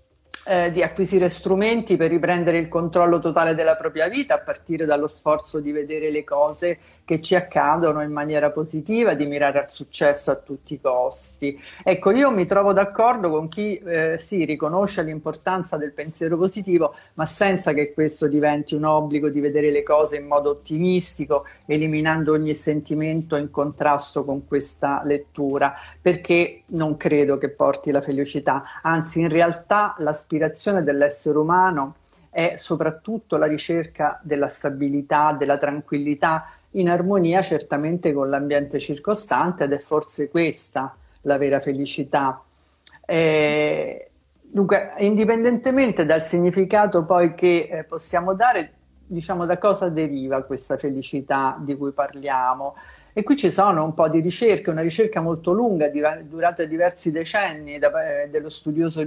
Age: 50-69